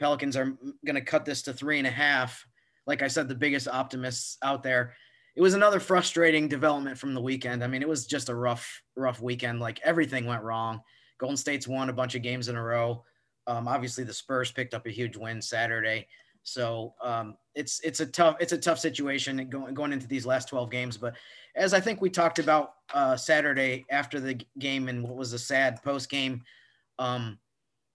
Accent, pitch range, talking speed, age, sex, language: American, 125-145 Hz, 210 wpm, 30-49, male, English